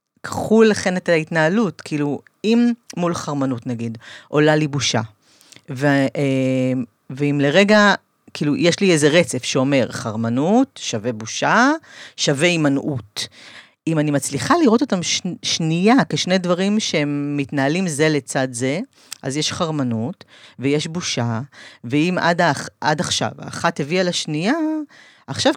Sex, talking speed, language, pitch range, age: female, 120 wpm, Hebrew, 140-195 Hz, 40-59